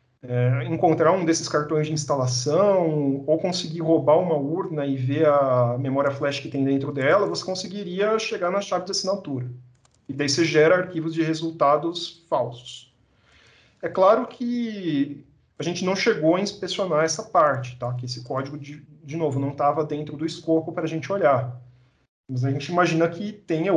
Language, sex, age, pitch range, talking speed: Portuguese, male, 40-59, 135-185 Hz, 170 wpm